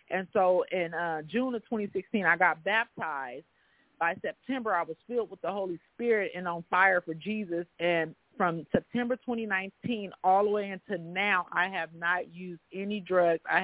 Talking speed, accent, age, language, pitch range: 175 wpm, American, 40-59, English, 175-210 Hz